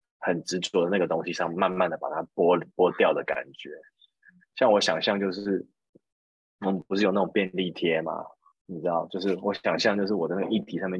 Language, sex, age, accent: Chinese, male, 20-39, native